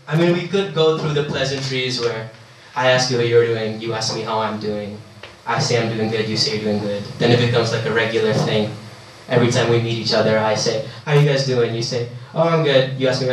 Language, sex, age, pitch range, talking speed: German, male, 10-29, 115-130 Hz, 265 wpm